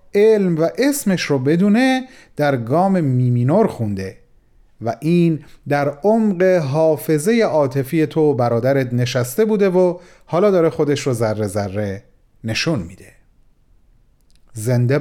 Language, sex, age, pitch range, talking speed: Persian, male, 40-59, 120-175 Hz, 120 wpm